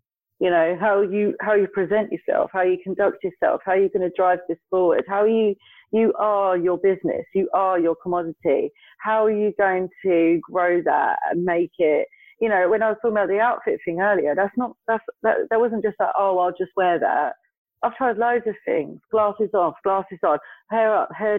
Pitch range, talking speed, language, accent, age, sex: 175-230 Hz, 210 wpm, English, British, 40-59, female